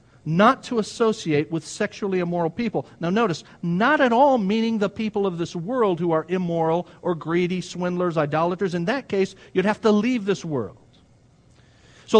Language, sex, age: English, male, 50-69